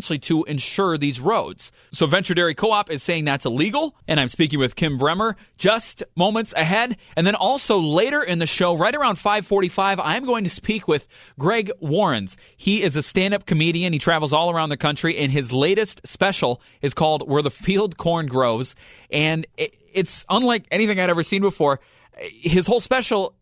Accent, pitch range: American, 145-185 Hz